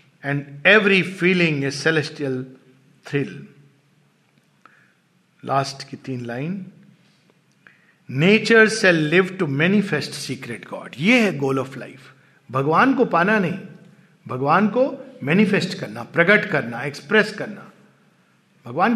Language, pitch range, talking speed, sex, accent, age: Hindi, 145-205 Hz, 110 wpm, male, native, 50-69